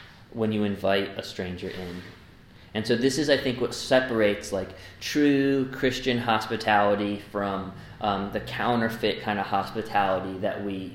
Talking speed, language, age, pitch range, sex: 150 wpm, English, 20-39, 95-110 Hz, male